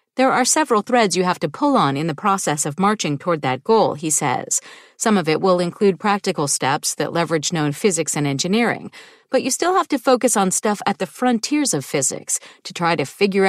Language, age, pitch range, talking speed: English, 40-59, 170-245 Hz, 220 wpm